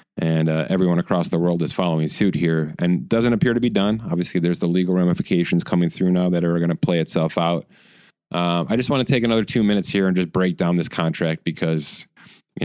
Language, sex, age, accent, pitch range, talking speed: English, male, 30-49, American, 80-100 Hz, 230 wpm